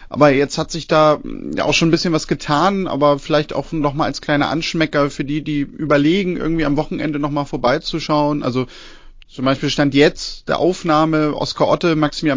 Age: 30-49